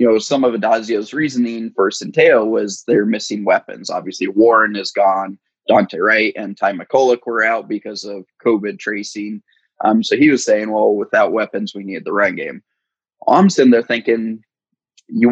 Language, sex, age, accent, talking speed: English, male, 20-39, American, 175 wpm